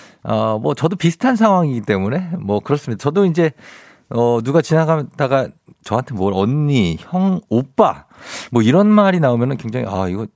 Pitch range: 95-150 Hz